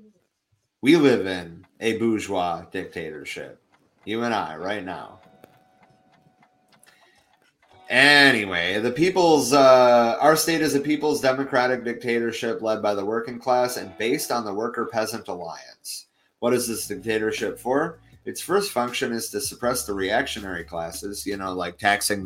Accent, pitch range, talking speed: American, 95-130 Hz, 140 wpm